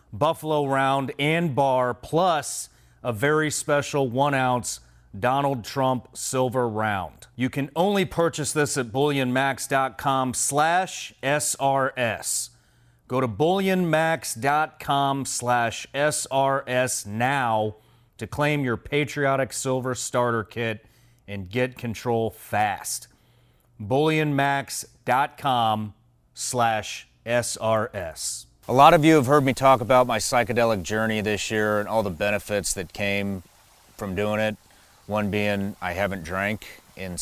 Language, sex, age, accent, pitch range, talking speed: English, male, 30-49, American, 100-130 Hz, 105 wpm